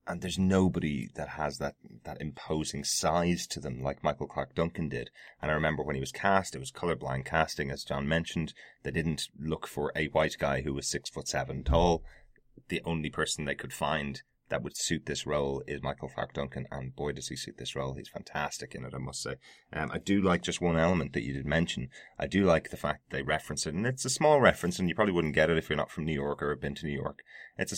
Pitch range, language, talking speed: 70-85 Hz, English, 250 wpm